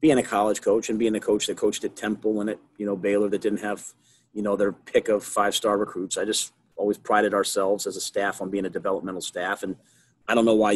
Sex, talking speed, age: male, 250 wpm, 30-49